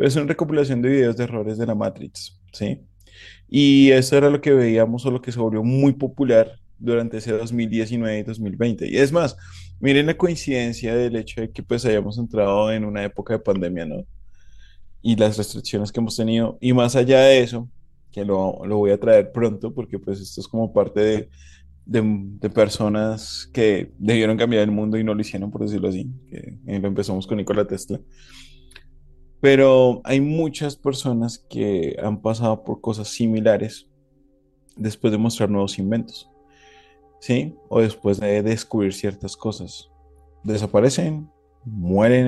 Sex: male